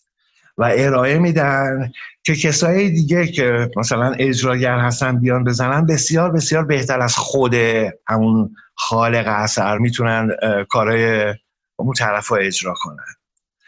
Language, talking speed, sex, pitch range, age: Persian, 115 wpm, male, 110-150 Hz, 50-69